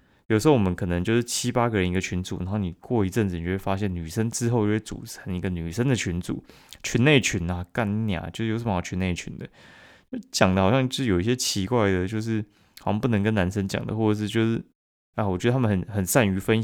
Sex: male